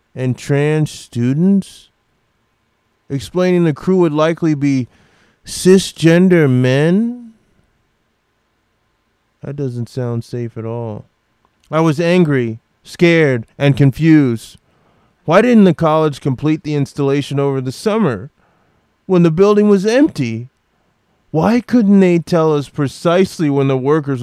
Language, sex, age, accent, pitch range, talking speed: English, male, 20-39, American, 140-195 Hz, 115 wpm